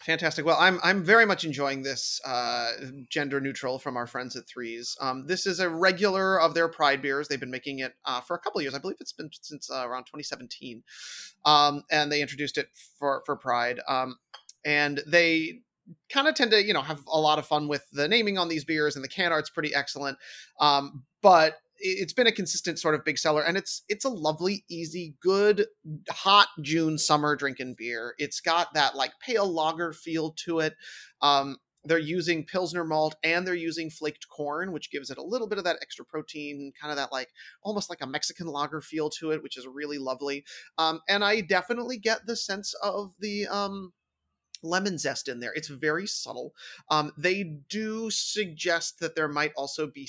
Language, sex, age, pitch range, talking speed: English, male, 30-49, 140-180 Hz, 205 wpm